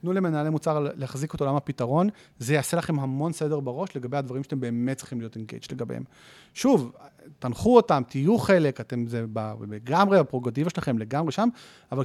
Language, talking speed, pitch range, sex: English, 165 wpm, 135-185 Hz, male